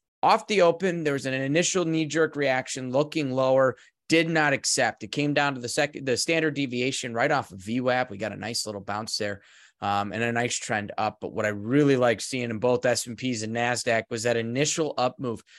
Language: English